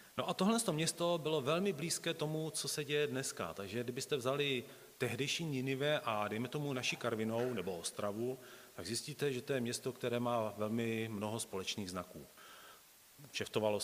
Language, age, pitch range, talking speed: Czech, 40-59, 95-135 Hz, 160 wpm